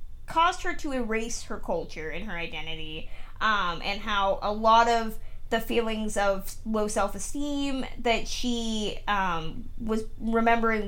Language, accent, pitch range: English, American, 195-235 Hz